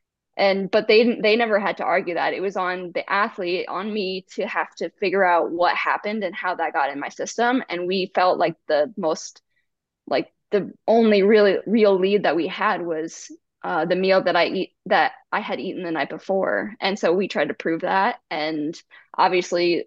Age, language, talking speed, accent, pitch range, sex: 10-29, English, 205 wpm, American, 175-215 Hz, female